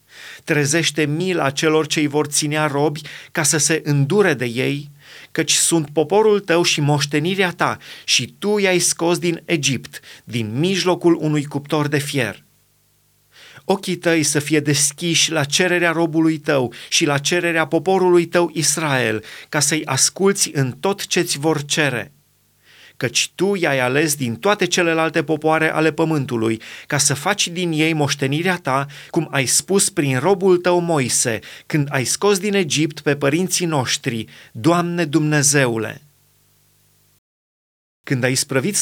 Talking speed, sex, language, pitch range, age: 145 wpm, male, Romanian, 135-170 Hz, 30-49